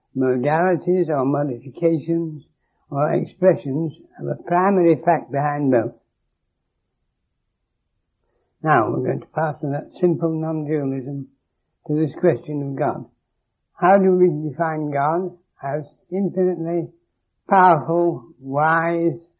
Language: English